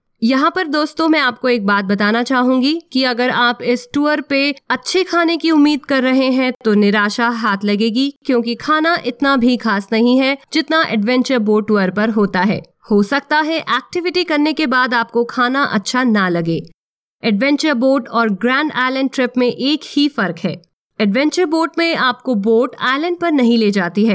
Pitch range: 220-280 Hz